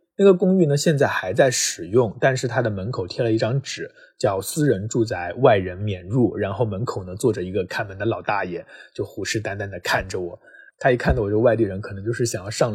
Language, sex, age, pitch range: Chinese, male, 20-39, 105-140 Hz